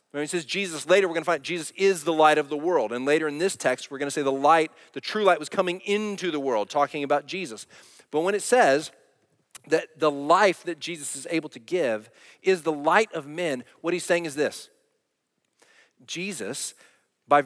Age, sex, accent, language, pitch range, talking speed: 40-59, male, American, English, 130-185 Hz, 210 wpm